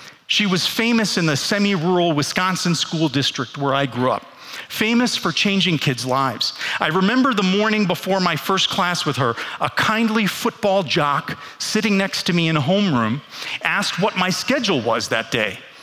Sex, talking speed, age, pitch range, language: male, 175 wpm, 40-59, 165-225 Hz, English